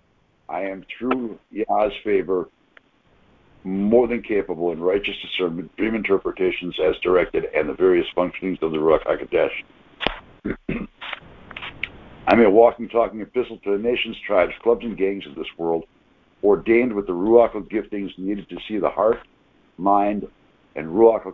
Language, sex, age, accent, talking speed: English, male, 60-79, American, 145 wpm